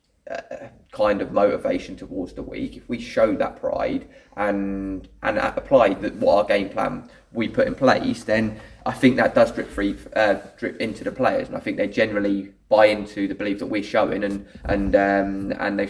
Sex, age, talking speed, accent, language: male, 20-39, 195 wpm, British, English